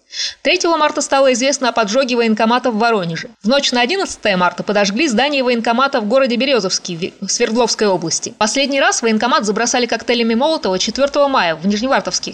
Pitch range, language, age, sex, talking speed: 220-265 Hz, Russian, 20-39, female, 160 wpm